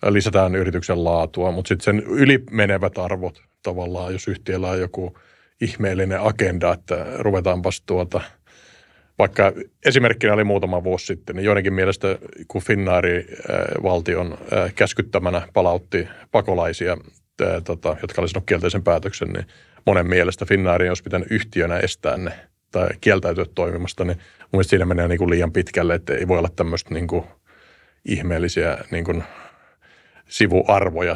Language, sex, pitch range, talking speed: Finnish, male, 90-100 Hz, 125 wpm